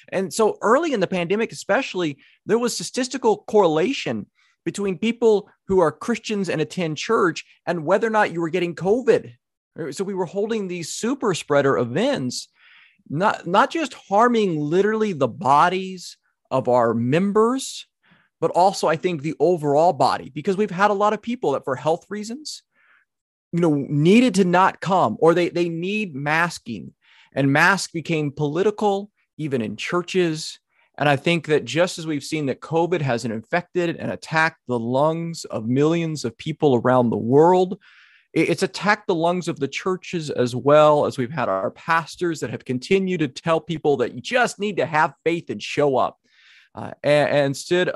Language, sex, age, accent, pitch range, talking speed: English, male, 30-49, American, 145-200 Hz, 175 wpm